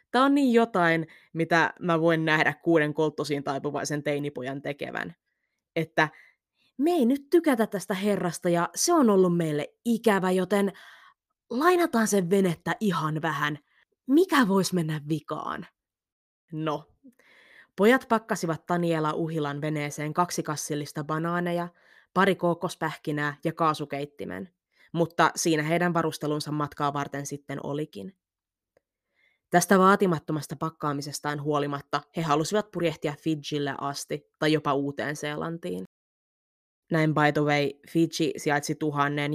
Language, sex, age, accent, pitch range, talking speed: Finnish, female, 20-39, native, 145-175 Hz, 115 wpm